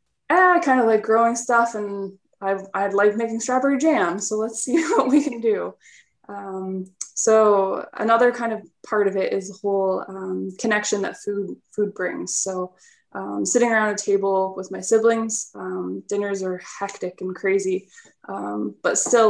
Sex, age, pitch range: female, 20-39, 190-225 Hz